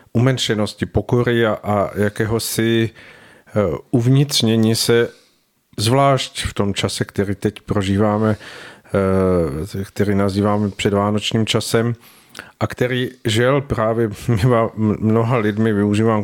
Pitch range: 105-120 Hz